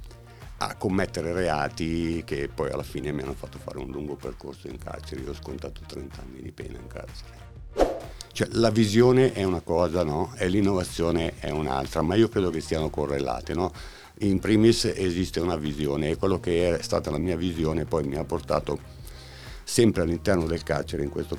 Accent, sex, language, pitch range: native, male, Italian, 75-95 Hz